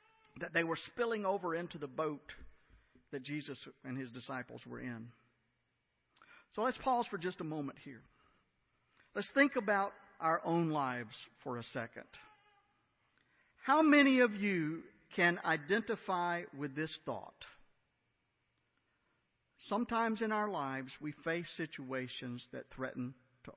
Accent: American